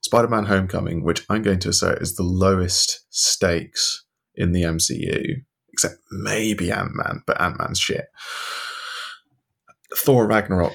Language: English